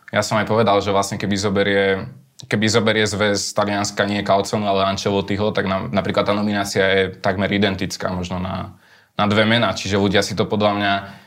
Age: 20-39